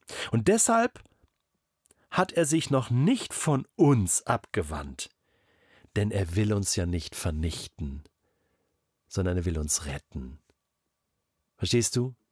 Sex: male